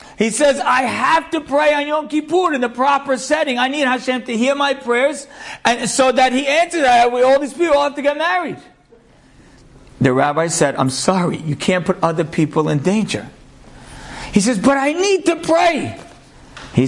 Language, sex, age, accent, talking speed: English, male, 50-69, American, 190 wpm